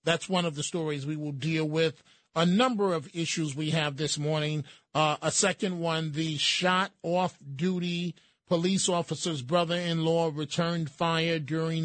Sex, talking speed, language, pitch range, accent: male, 155 wpm, English, 155-180 Hz, American